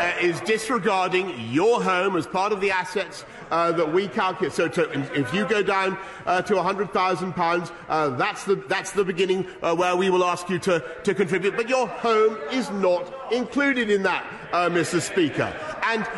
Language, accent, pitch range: English, British, 180-235 Hz